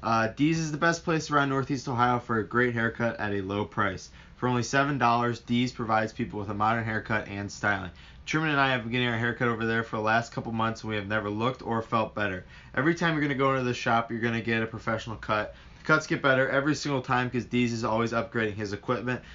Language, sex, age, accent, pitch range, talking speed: English, male, 20-39, American, 105-130 Hz, 255 wpm